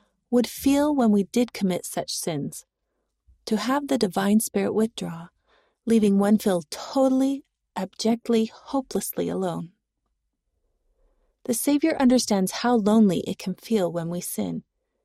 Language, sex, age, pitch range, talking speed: German, female, 30-49, 190-265 Hz, 130 wpm